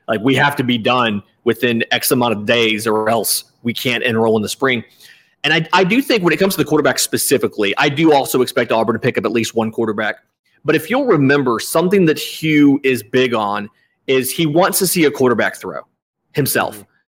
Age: 30-49